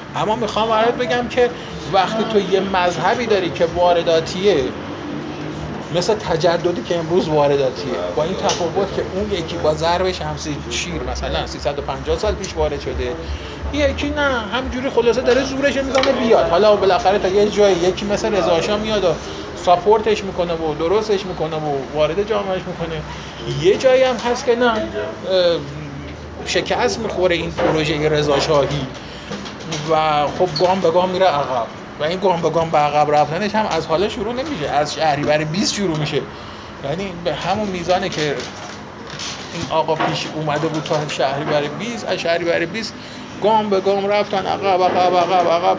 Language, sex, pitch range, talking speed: Persian, male, 155-205 Hz, 160 wpm